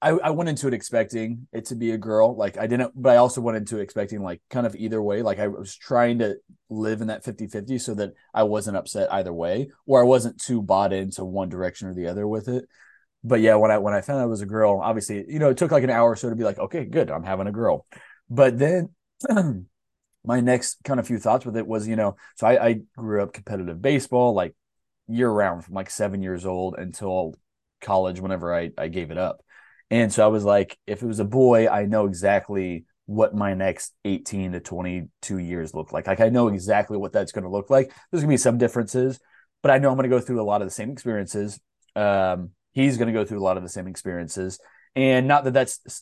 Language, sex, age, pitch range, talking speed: English, male, 20-39, 100-125 Hz, 250 wpm